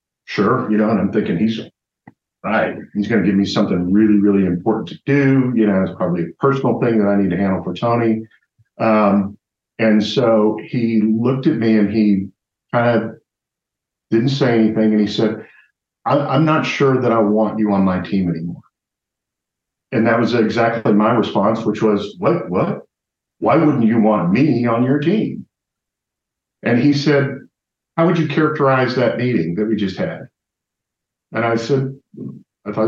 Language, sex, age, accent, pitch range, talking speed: English, male, 50-69, American, 105-130 Hz, 180 wpm